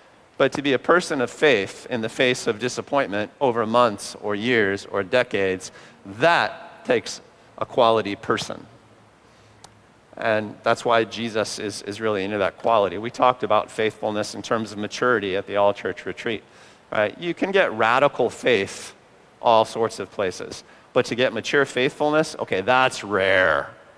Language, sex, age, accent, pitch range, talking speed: English, male, 40-59, American, 100-125 Hz, 160 wpm